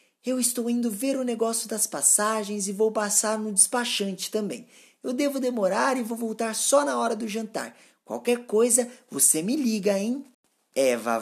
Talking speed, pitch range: 170 wpm, 200-245 Hz